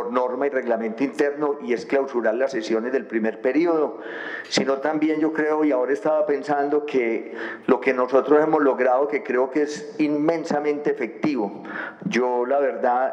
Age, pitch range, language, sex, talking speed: 40-59, 115-145 Hz, Spanish, male, 160 wpm